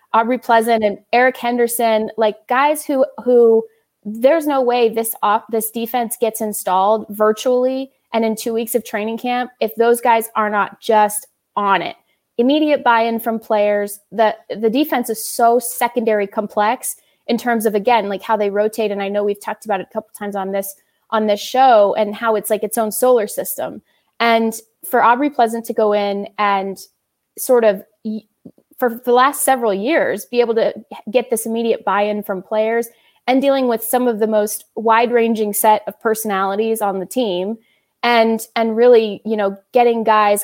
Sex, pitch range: female, 210-245 Hz